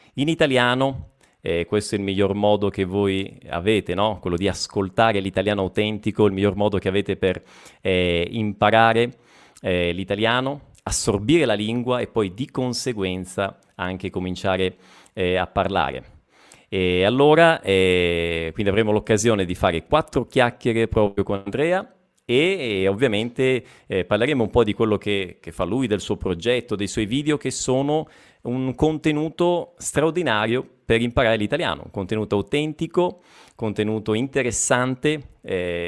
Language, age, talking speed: Italian, 30-49, 145 wpm